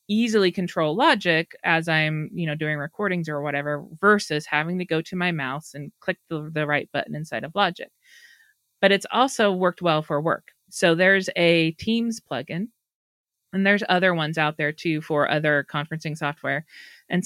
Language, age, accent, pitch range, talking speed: English, 30-49, American, 155-185 Hz, 175 wpm